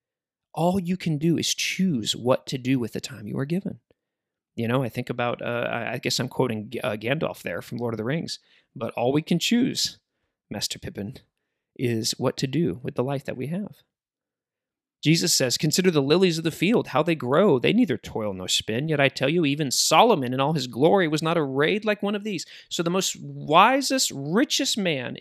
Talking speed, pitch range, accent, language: 210 wpm, 125-180 Hz, American, English